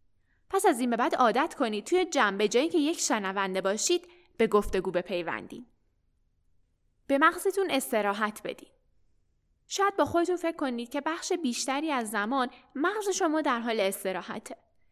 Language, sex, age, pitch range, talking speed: Persian, female, 10-29, 215-320 Hz, 140 wpm